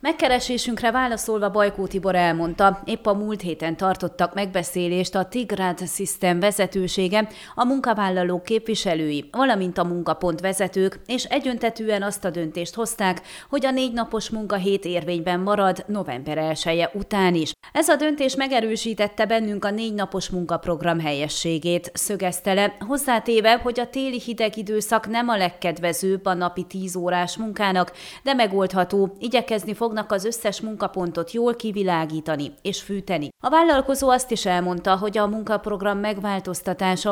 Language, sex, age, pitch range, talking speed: Hungarian, female, 30-49, 180-225 Hz, 135 wpm